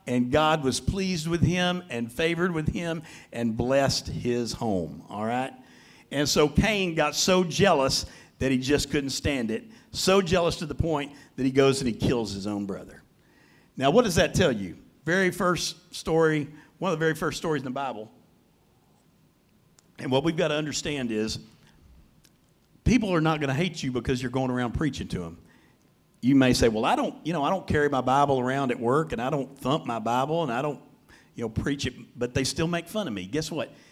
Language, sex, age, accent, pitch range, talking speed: English, male, 50-69, American, 120-165 Hz, 210 wpm